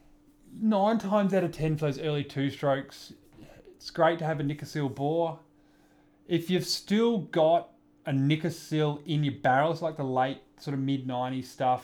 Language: English